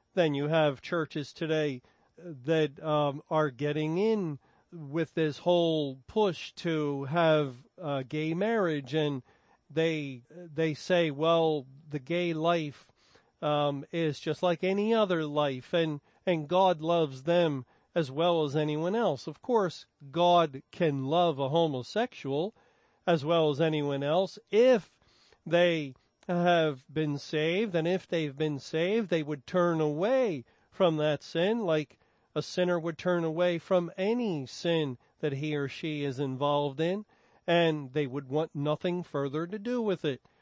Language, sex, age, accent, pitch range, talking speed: English, male, 40-59, American, 150-175 Hz, 145 wpm